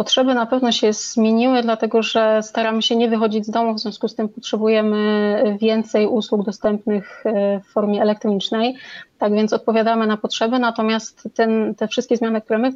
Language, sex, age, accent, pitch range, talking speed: Polish, female, 30-49, native, 215-230 Hz, 170 wpm